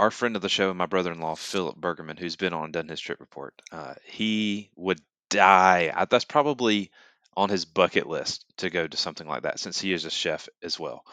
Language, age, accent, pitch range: English, 30-49, American, 90-105 Hz